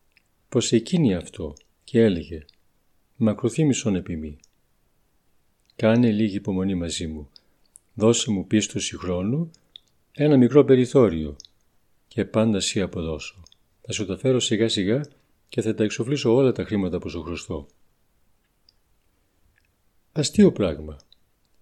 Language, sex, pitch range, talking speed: Greek, male, 90-135 Hz, 110 wpm